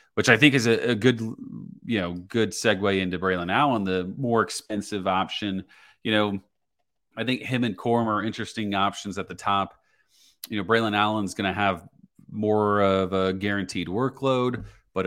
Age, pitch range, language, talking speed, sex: 30-49, 90-105 Hz, English, 175 wpm, male